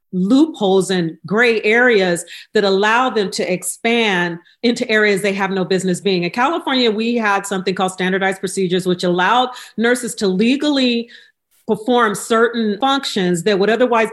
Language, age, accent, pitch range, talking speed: English, 40-59, American, 195-250 Hz, 150 wpm